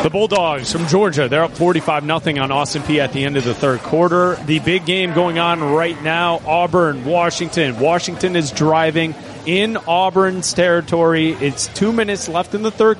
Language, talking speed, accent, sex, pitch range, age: English, 180 wpm, American, male, 140-175 Hz, 30-49